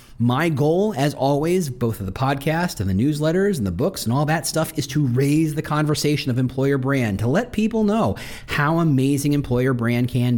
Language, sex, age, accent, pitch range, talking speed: English, male, 40-59, American, 120-170 Hz, 200 wpm